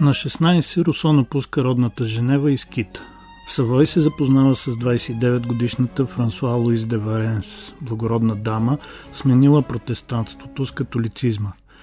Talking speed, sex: 120 wpm, male